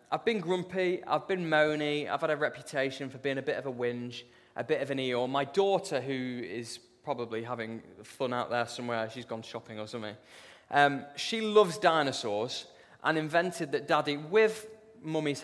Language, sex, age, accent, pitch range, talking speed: English, male, 20-39, British, 120-155 Hz, 185 wpm